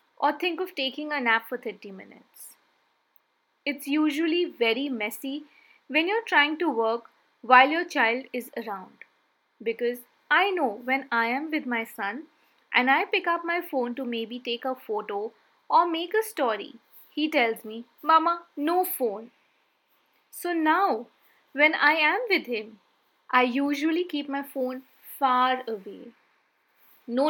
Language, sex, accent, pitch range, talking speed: English, female, Indian, 240-320 Hz, 150 wpm